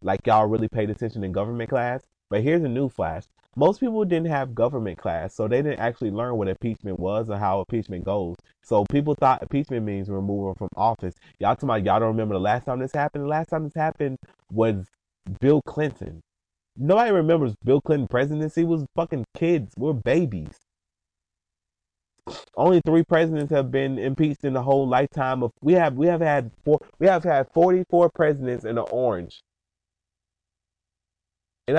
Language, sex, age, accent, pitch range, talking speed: English, male, 30-49, American, 100-150 Hz, 175 wpm